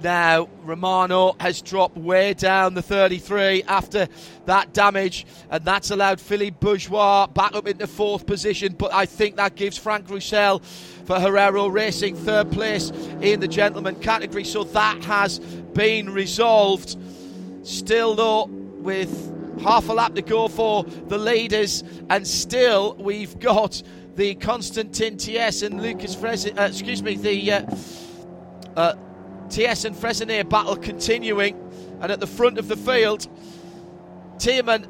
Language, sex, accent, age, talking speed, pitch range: English, male, British, 40-59, 145 wpm, 190-260 Hz